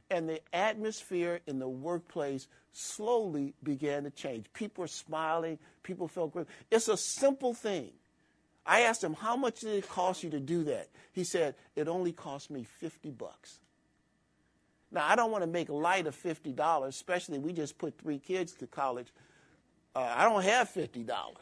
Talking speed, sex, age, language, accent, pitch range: 175 wpm, male, 50-69, English, American, 155-210 Hz